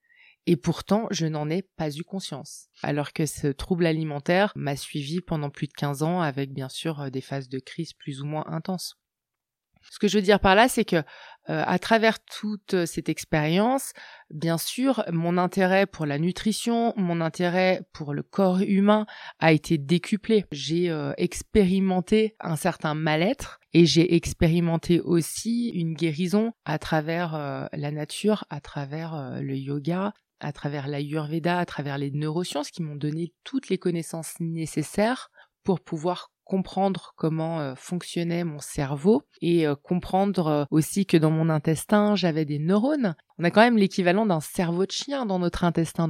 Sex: female